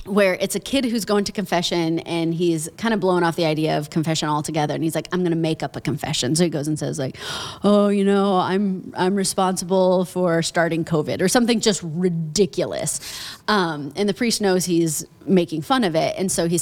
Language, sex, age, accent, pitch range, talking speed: English, female, 30-49, American, 165-215 Hz, 220 wpm